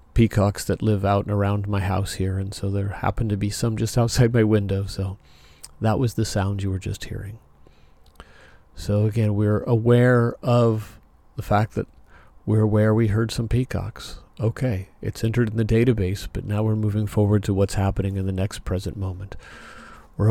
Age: 40-59